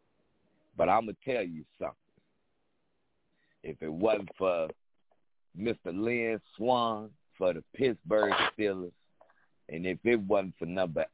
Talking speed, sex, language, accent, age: 120 wpm, male, English, American, 50-69